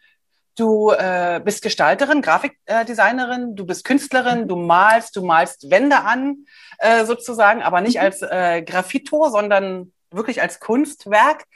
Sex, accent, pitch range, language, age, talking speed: female, German, 185-255 Hz, German, 30-49, 135 wpm